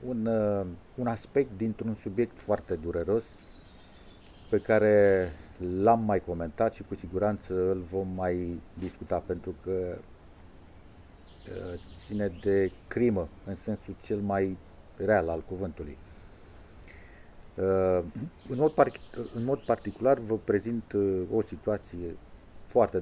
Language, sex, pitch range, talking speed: Romanian, male, 90-110 Hz, 110 wpm